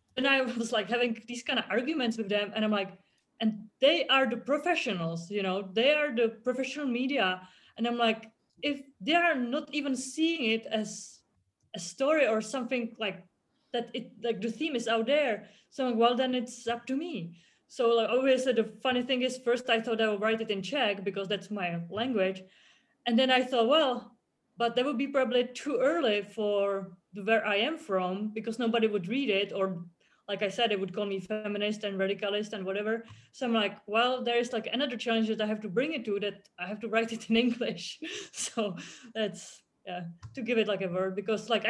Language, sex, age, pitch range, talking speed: English, female, 30-49, 205-245 Hz, 215 wpm